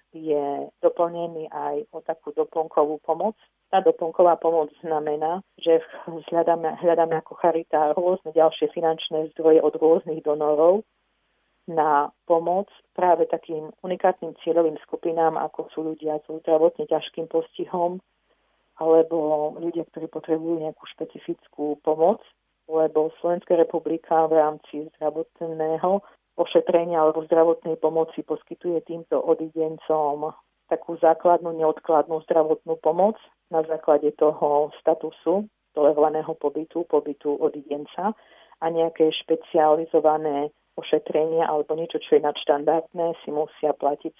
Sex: female